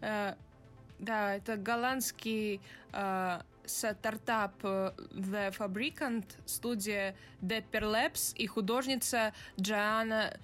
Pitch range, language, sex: 210-265 Hz, Russian, female